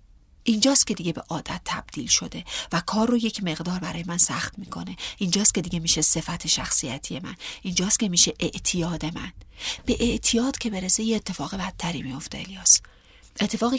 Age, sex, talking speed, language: 40-59, female, 165 wpm, Persian